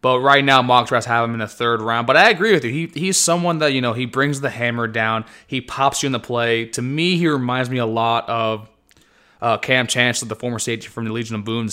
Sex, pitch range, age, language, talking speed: male, 115-145 Hz, 20-39, English, 265 wpm